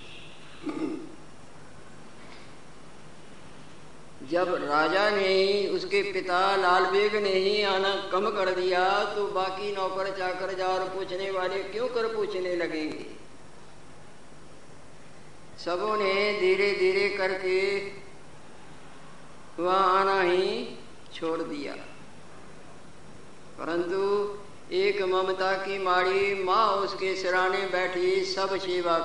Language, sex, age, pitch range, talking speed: Hindi, female, 50-69, 180-195 Hz, 95 wpm